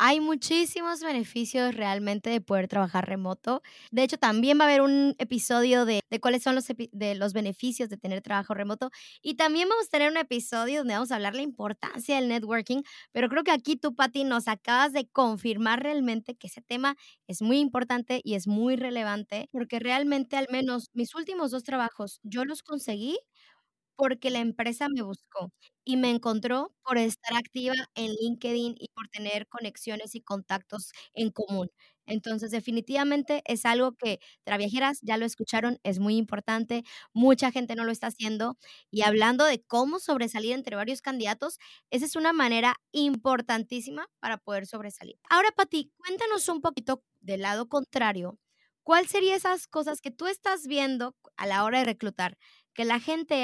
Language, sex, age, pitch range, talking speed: Spanish, male, 20-39, 220-280 Hz, 175 wpm